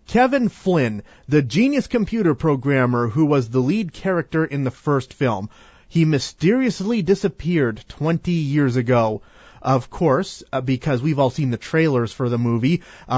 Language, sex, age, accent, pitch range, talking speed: English, male, 30-49, American, 130-185 Hz, 150 wpm